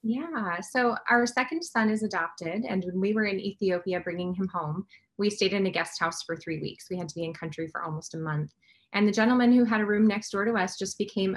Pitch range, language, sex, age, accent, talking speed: 175-215 Hz, English, female, 20-39, American, 255 wpm